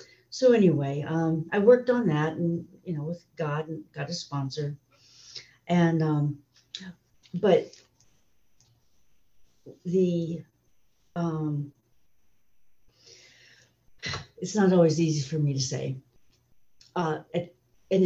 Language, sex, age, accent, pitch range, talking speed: English, female, 60-79, American, 145-200 Hz, 105 wpm